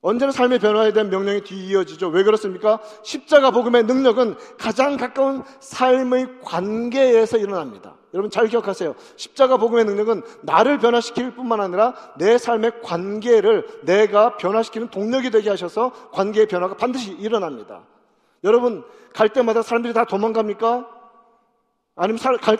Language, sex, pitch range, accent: Korean, male, 185-245 Hz, native